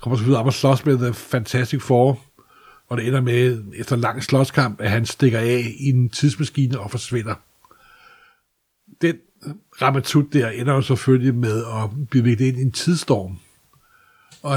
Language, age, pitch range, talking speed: Danish, 60-79, 125-145 Hz, 165 wpm